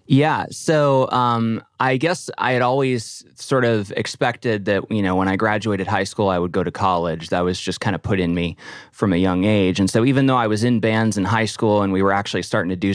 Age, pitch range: 20-39, 95-125 Hz